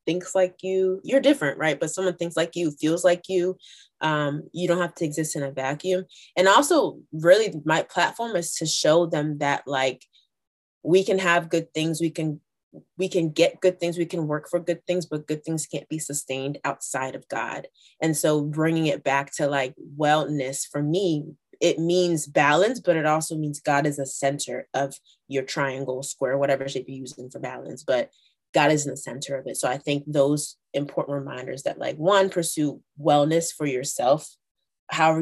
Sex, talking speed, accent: female, 195 wpm, American